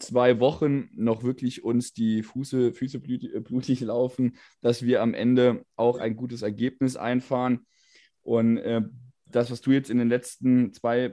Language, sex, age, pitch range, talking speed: German, male, 20-39, 115-145 Hz, 145 wpm